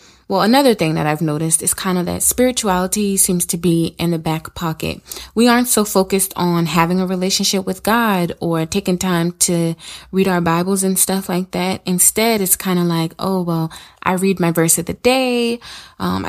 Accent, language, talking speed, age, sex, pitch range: American, English, 200 wpm, 20-39, female, 165-205 Hz